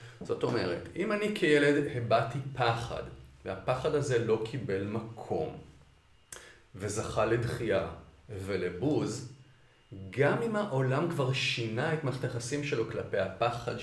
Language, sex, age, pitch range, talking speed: Hebrew, male, 40-59, 110-155 Hz, 110 wpm